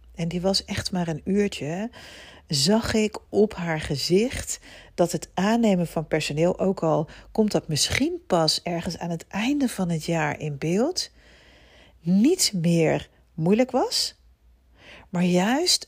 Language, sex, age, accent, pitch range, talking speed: Dutch, female, 40-59, Dutch, 160-205 Hz, 145 wpm